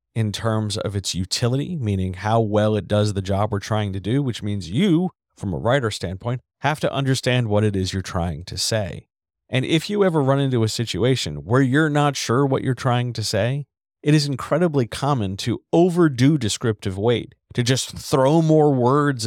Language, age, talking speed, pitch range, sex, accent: English, 40-59, 195 wpm, 100-140 Hz, male, American